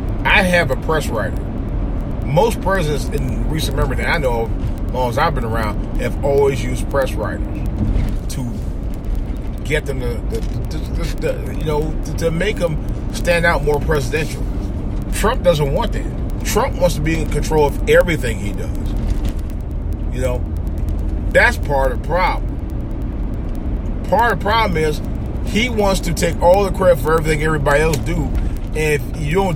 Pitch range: 100-140 Hz